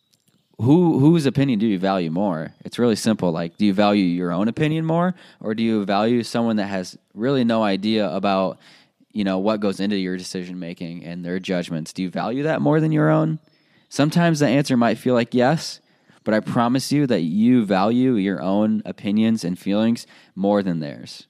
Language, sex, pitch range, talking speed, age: English, male, 95-130 Hz, 195 wpm, 20-39